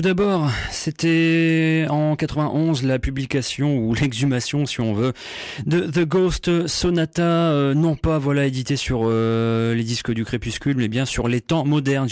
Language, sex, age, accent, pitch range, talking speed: French, male, 30-49, French, 120-155 Hz, 160 wpm